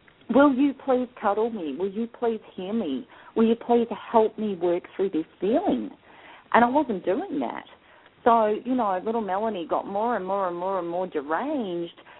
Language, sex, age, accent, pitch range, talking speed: English, female, 40-59, Australian, 175-250 Hz, 185 wpm